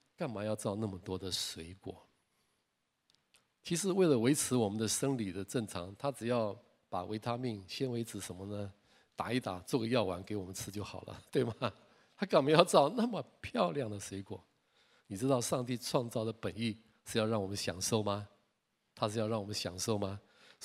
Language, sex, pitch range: Chinese, male, 100-125 Hz